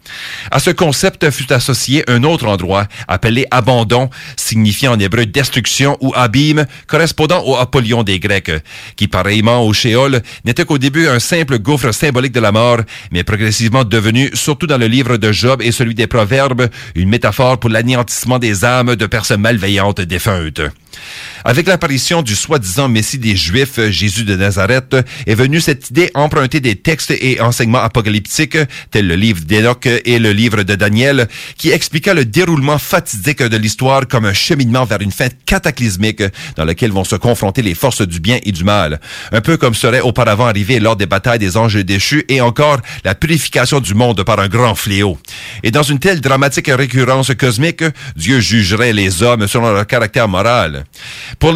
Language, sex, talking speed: English, male, 175 wpm